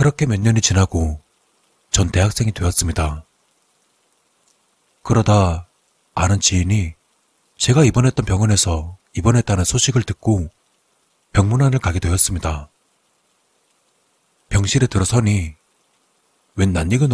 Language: Korean